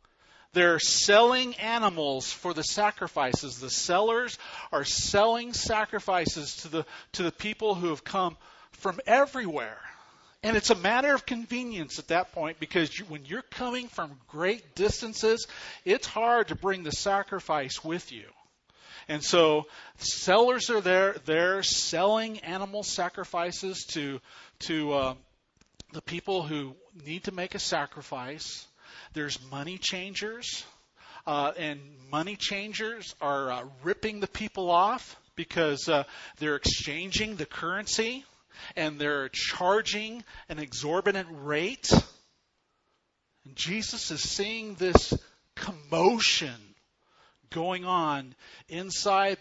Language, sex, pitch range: English, male, 150-210 Hz